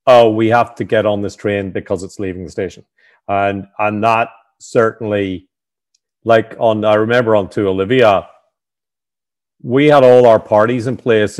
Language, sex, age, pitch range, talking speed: English, male, 40-59, 110-145 Hz, 165 wpm